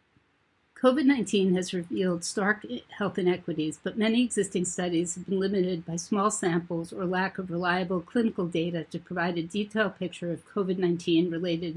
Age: 50-69